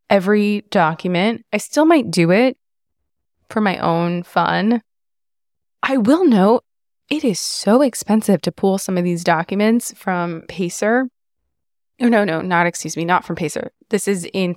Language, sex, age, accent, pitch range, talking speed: English, female, 20-39, American, 165-205 Hz, 155 wpm